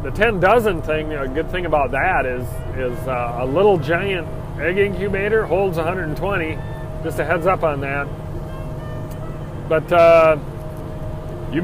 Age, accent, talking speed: 40-59, American, 155 wpm